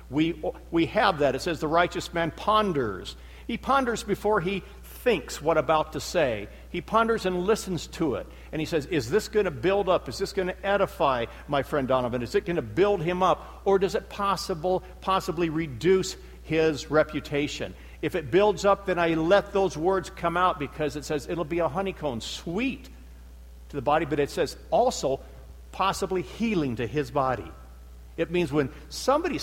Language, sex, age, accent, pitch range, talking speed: English, male, 60-79, American, 125-195 Hz, 190 wpm